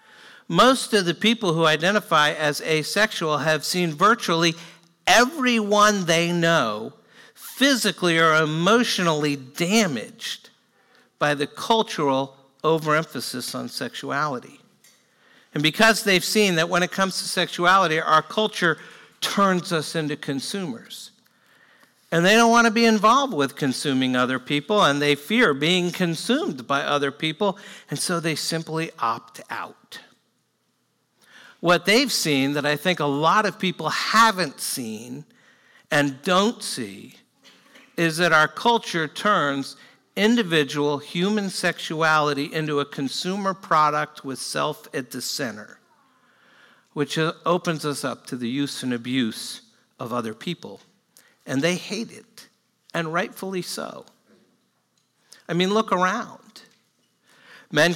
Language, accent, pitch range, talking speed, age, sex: English, American, 150-210 Hz, 125 wpm, 50-69, male